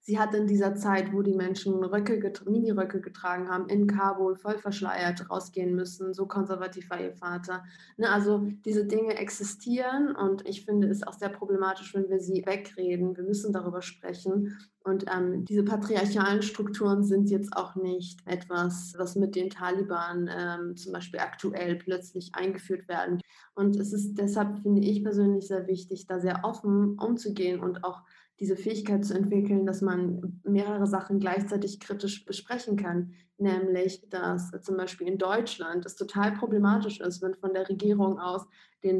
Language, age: German, 20-39